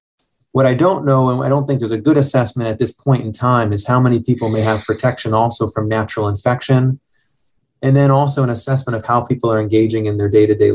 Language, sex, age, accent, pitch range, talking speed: English, male, 30-49, American, 110-125 Hz, 230 wpm